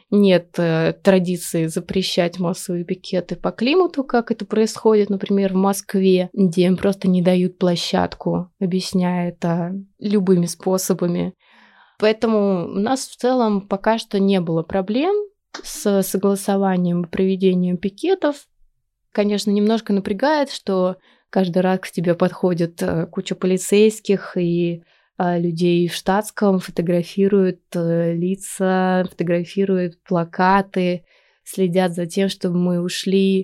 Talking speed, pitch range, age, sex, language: 115 wpm, 180-210 Hz, 20-39, female, Russian